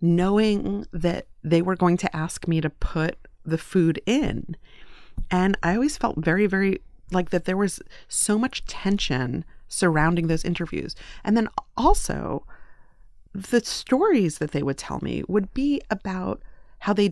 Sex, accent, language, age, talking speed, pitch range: female, American, English, 30-49, 155 wpm, 165-205 Hz